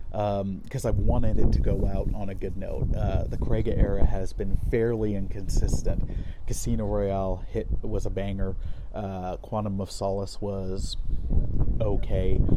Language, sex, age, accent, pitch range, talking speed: English, male, 30-49, American, 95-110 Hz, 160 wpm